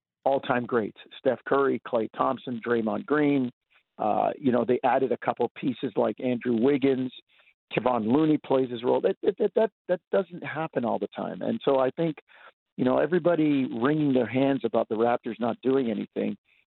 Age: 50-69